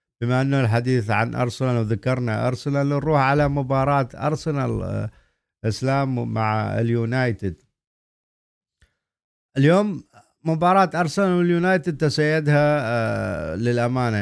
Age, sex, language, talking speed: 50-69, male, Arabic, 85 wpm